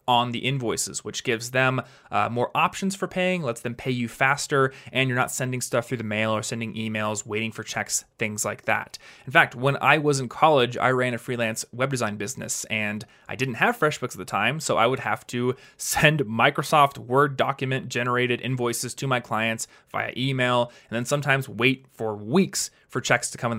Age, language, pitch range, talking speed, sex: 20-39, English, 115-145 Hz, 210 wpm, male